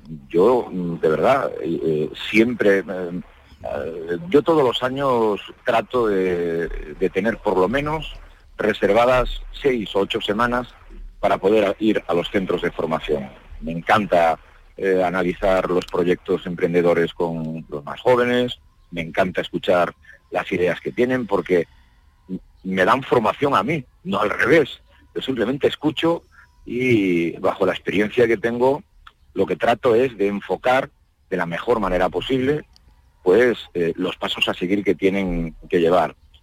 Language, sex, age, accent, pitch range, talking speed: Spanish, male, 50-69, Spanish, 85-120 Hz, 145 wpm